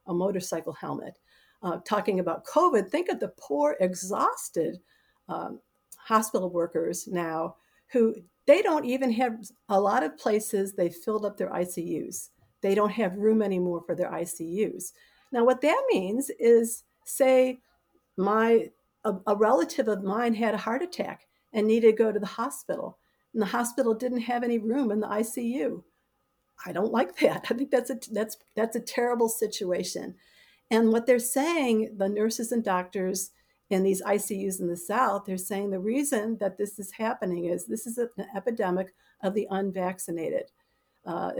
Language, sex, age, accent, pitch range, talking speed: English, female, 50-69, American, 190-235 Hz, 165 wpm